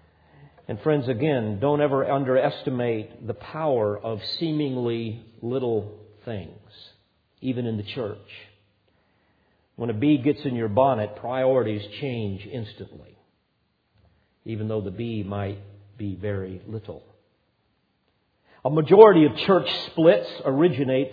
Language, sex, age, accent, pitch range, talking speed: English, male, 50-69, American, 110-140 Hz, 115 wpm